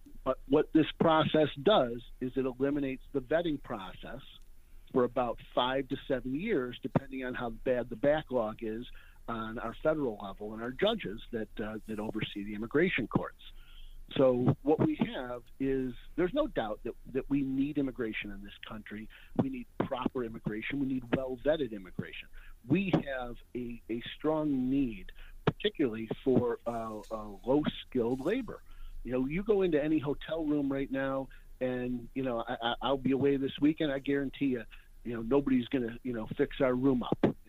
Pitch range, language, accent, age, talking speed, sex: 110-140 Hz, English, American, 50-69, 175 wpm, male